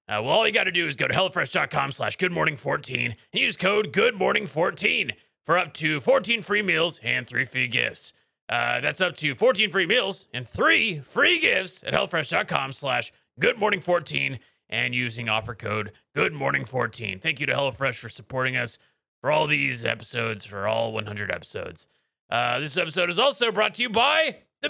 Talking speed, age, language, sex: 175 wpm, 30-49, English, male